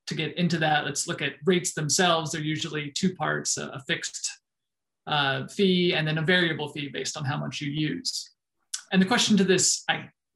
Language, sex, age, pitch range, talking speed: English, male, 20-39, 155-185 Hz, 210 wpm